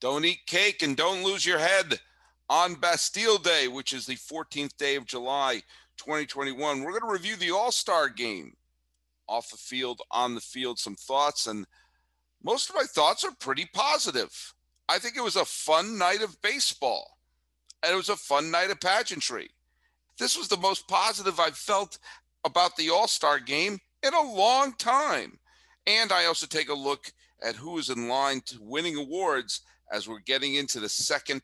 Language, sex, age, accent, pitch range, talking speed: English, male, 50-69, American, 125-180 Hz, 180 wpm